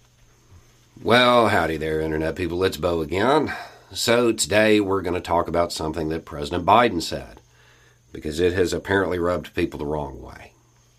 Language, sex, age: English, male, 50-69